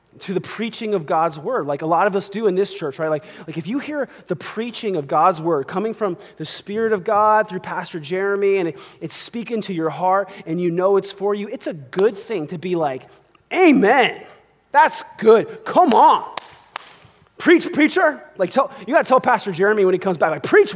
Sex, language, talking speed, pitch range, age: male, English, 220 wpm, 165-220 Hz, 30-49